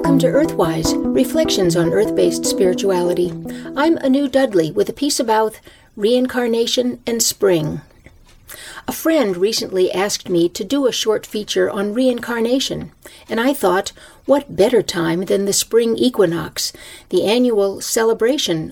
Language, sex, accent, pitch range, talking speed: English, female, American, 185-250 Hz, 140 wpm